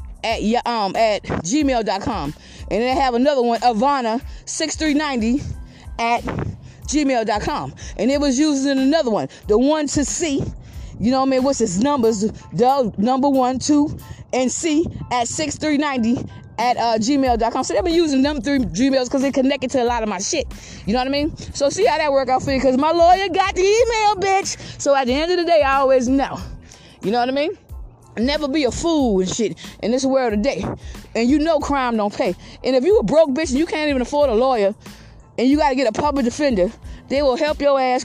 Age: 20-39